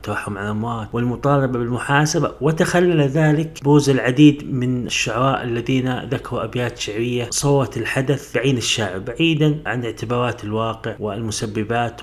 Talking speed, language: 115 wpm, Arabic